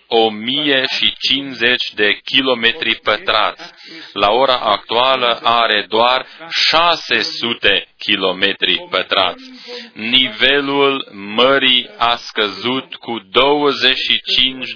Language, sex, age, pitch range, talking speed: Romanian, male, 30-49, 110-140 Hz, 75 wpm